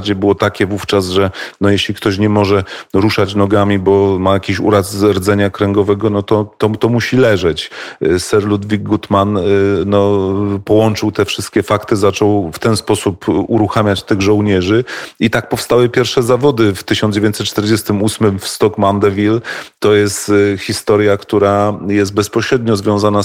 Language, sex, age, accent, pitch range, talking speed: Polish, male, 40-59, native, 100-110 Hz, 135 wpm